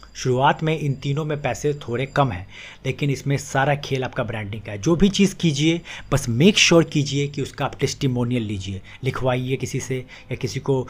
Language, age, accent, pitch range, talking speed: Hindi, 30-49, native, 115-140 Hz, 200 wpm